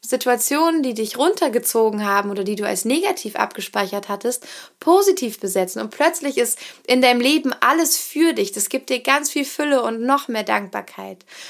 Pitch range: 220-270 Hz